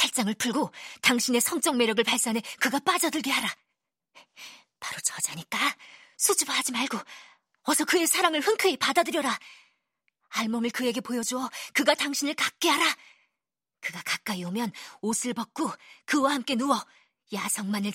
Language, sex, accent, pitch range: Korean, female, native, 190-270 Hz